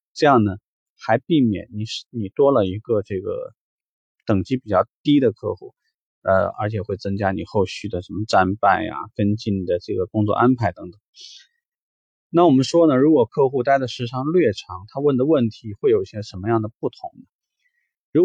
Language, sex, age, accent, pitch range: Chinese, male, 20-39, native, 105-150 Hz